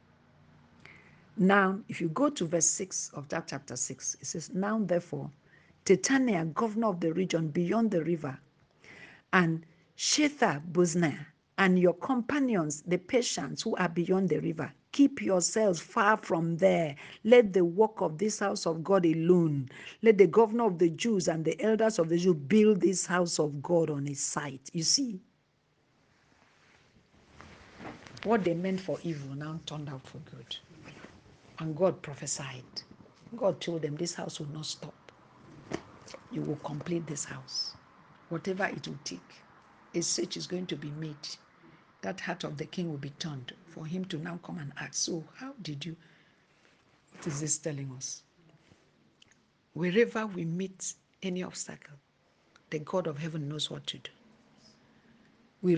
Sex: female